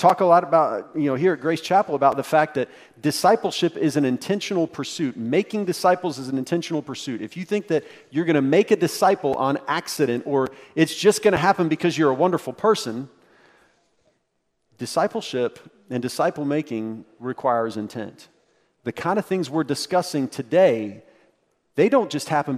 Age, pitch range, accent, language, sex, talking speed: 40-59, 130-175 Hz, American, English, male, 175 wpm